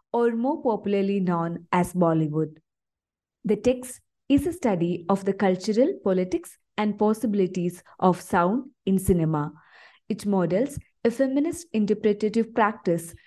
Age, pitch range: 20-39, 180-230 Hz